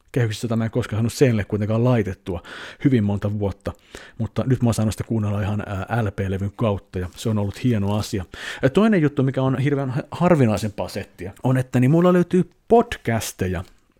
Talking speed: 175 wpm